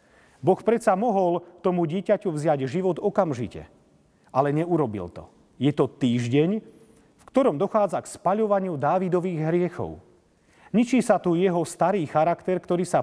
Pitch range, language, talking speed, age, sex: 130-185 Hz, Slovak, 135 wpm, 40-59, male